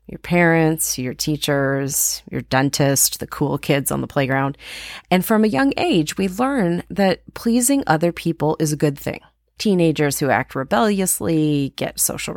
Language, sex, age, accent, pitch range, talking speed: English, female, 30-49, American, 145-195 Hz, 160 wpm